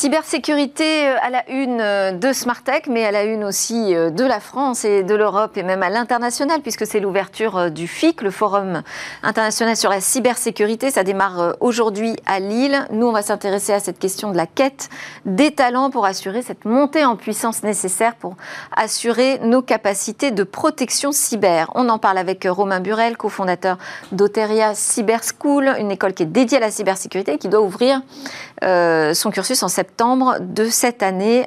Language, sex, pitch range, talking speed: French, female, 195-255 Hz, 175 wpm